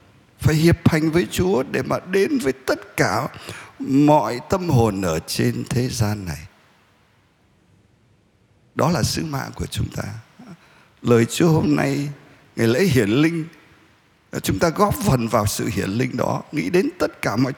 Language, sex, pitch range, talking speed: Vietnamese, male, 110-160 Hz, 165 wpm